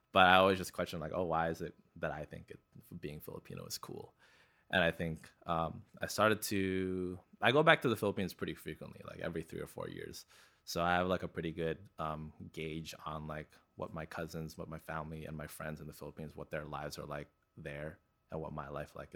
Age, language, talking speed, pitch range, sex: 20-39, English, 225 wpm, 80-100 Hz, male